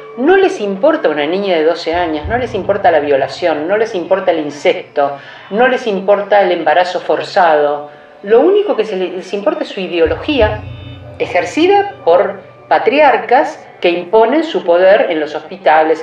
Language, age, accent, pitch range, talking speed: Spanish, 50-69, Argentinian, 155-220 Hz, 155 wpm